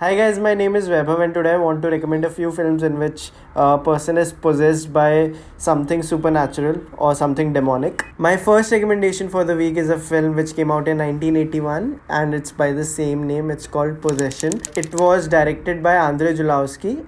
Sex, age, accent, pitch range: male, 20-39, Indian, 150-175 Hz